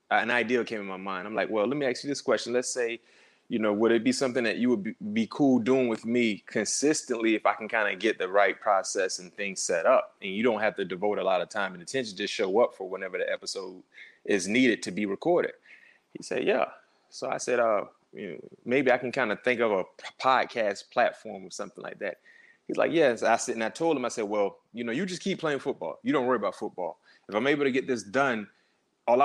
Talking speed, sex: 255 wpm, male